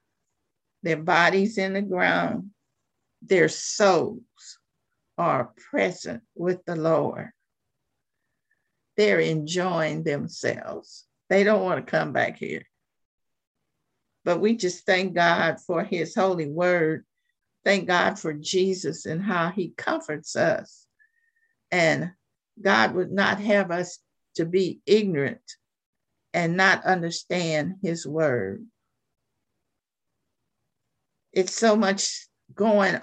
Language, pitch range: English, 165-205 Hz